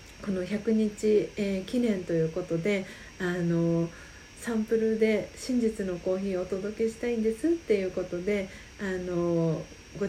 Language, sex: Japanese, female